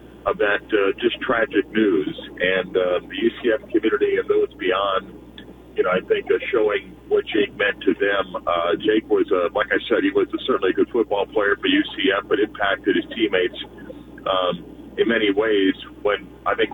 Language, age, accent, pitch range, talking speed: English, 40-59, American, 330-425 Hz, 190 wpm